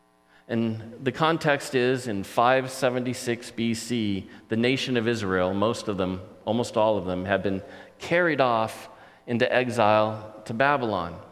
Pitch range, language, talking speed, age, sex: 95-155 Hz, English, 140 wpm, 40-59, male